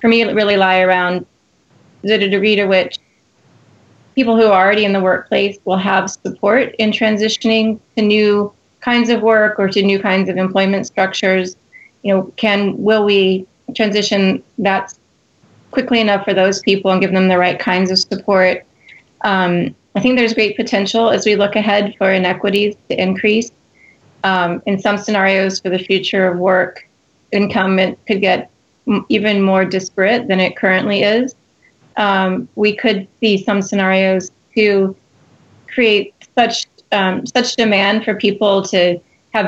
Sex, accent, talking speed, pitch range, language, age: female, American, 155 wpm, 185-210 Hz, English, 30-49